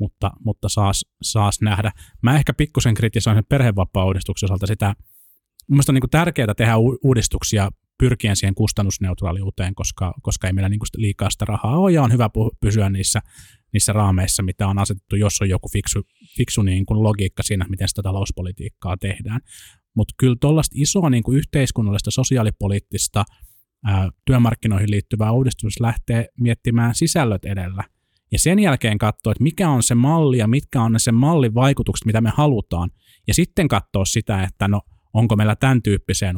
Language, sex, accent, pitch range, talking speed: Finnish, male, native, 100-125 Hz, 160 wpm